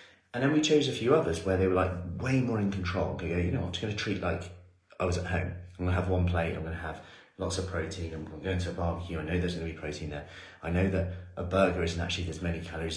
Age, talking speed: 30-49, 285 wpm